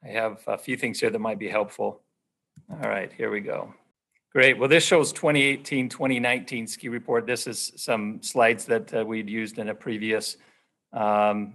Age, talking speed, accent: 50-69, 175 wpm, American